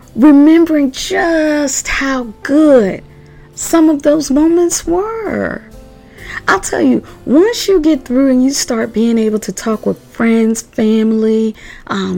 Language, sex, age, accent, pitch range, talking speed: English, female, 40-59, American, 225-300 Hz, 135 wpm